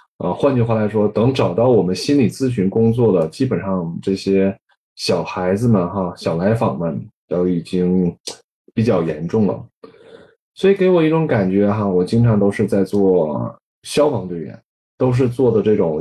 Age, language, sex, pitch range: 20-39, Chinese, male, 95-125 Hz